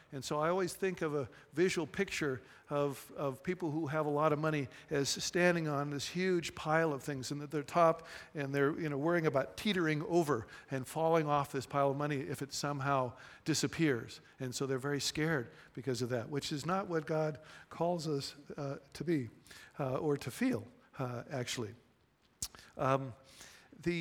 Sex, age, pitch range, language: male, 50-69, 135-160 Hz, English